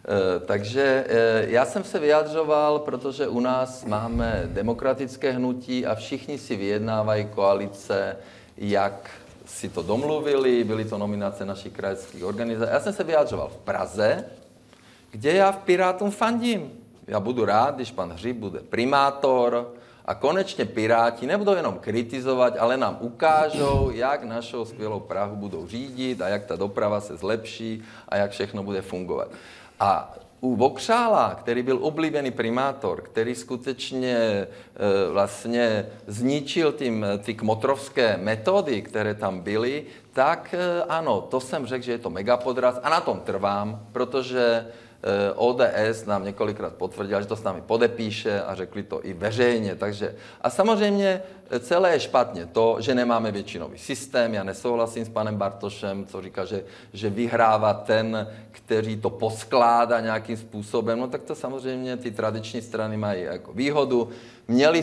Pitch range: 105-130 Hz